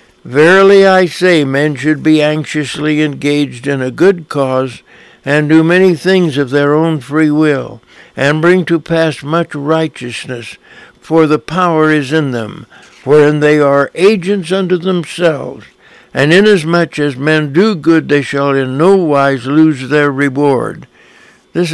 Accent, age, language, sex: American, 60-79, English, male